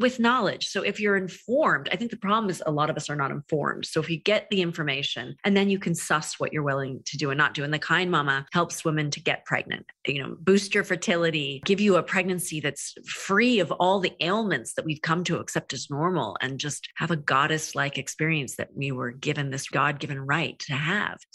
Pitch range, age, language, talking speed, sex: 155-195 Hz, 30-49, English, 235 wpm, female